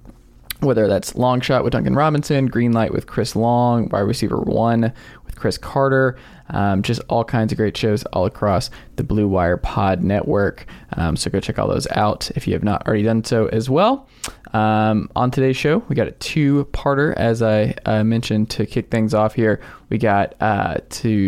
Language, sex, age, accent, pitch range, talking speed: English, male, 20-39, American, 105-125 Hz, 195 wpm